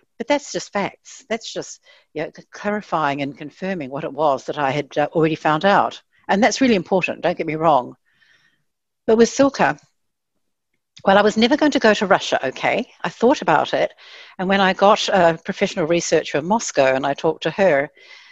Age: 60-79